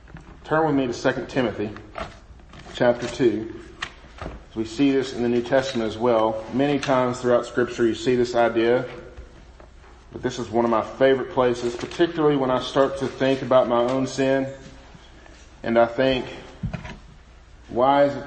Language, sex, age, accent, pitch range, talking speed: English, male, 40-59, American, 115-140 Hz, 160 wpm